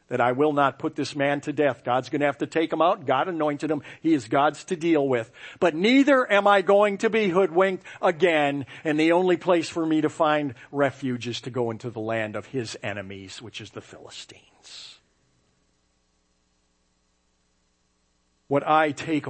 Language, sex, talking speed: English, male, 185 wpm